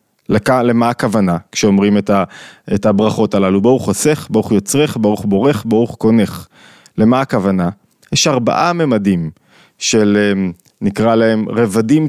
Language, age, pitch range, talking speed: Hebrew, 20-39, 110-145 Hz, 130 wpm